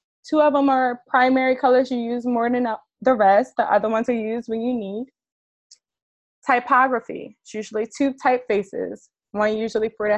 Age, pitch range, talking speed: 20-39, 205-245 Hz, 170 wpm